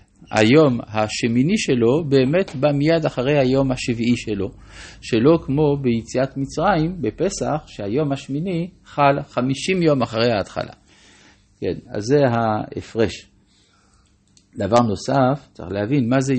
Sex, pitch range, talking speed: male, 105-140 Hz, 115 wpm